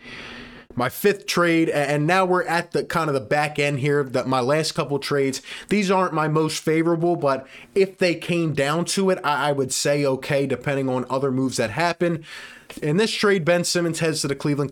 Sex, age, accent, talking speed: male, 20-39, American, 205 wpm